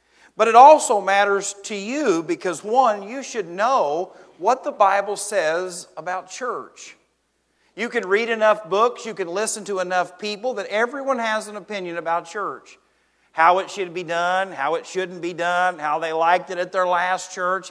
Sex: male